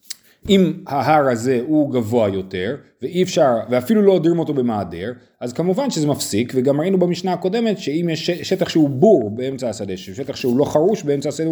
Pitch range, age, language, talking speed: 120-185 Hz, 30-49, Hebrew, 175 wpm